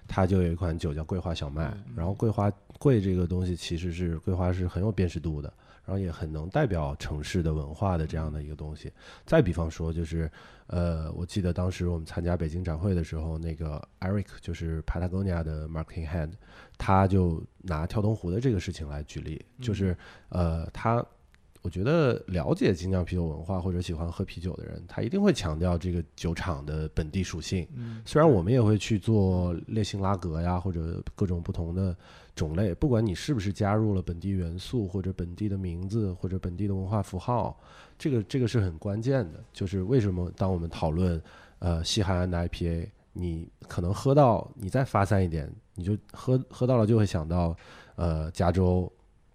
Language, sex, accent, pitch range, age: Chinese, male, native, 85-105 Hz, 20-39